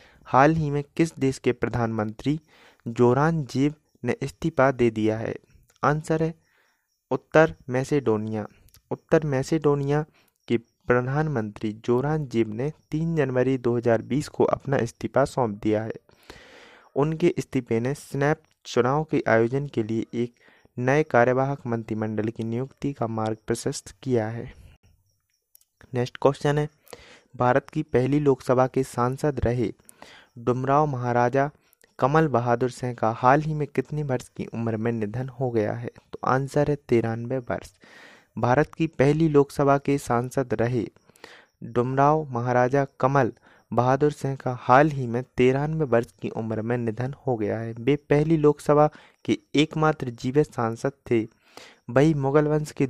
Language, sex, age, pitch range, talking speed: Hindi, male, 30-49, 115-145 Hz, 140 wpm